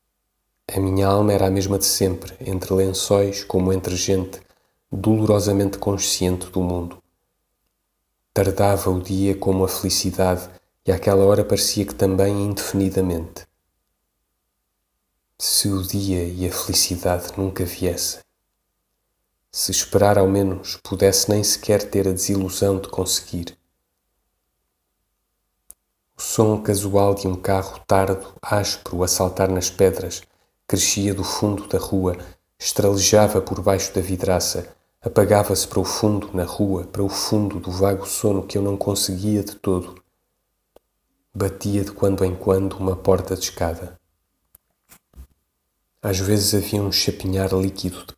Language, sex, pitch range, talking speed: Portuguese, male, 90-100 Hz, 130 wpm